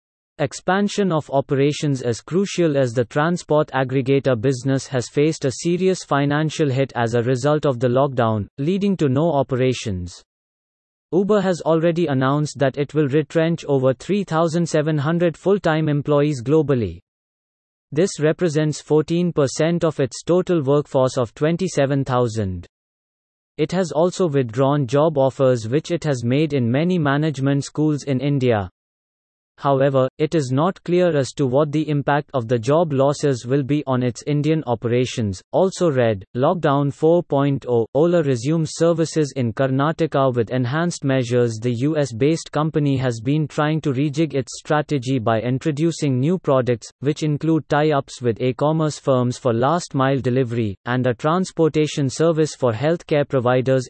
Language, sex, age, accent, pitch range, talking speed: English, male, 30-49, Indian, 130-155 Hz, 140 wpm